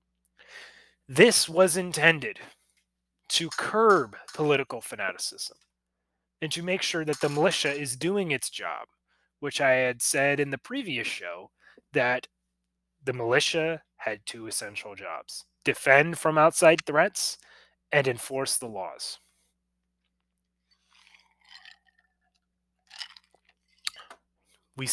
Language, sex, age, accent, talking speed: English, male, 20-39, American, 100 wpm